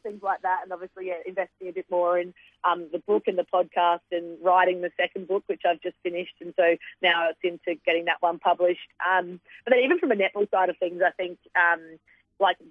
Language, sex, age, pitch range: English, female, 30-49, 170-190 Hz